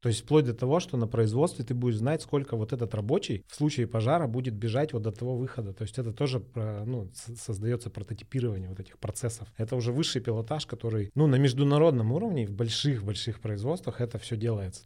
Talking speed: 200 wpm